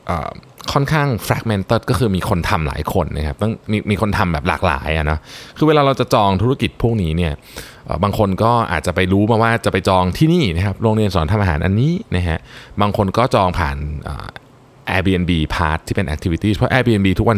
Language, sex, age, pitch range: Thai, male, 20-39, 85-120 Hz